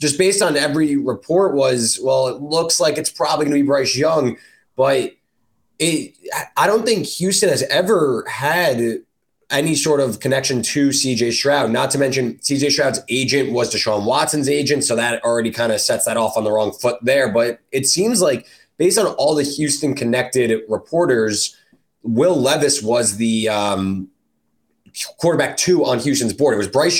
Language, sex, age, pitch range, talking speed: English, male, 20-39, 115-145 Hz, 175 wpm